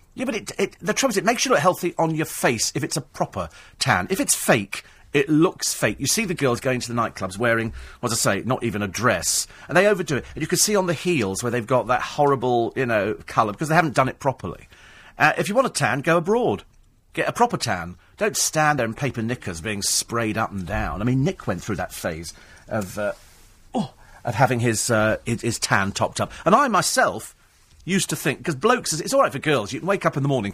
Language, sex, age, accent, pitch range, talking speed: English, male, 40-59, British, 110-180 Hz, 255 wpm